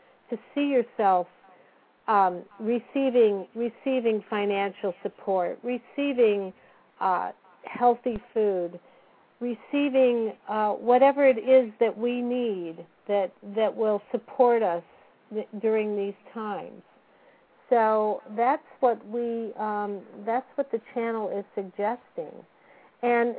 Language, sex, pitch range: English, female, 205-255 Hz